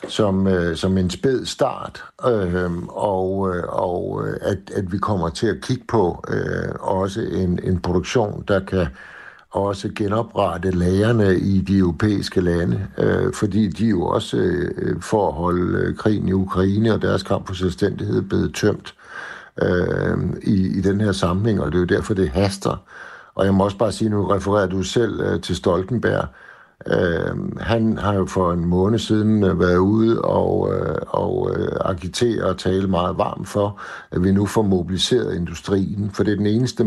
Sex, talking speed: male, 165 wpm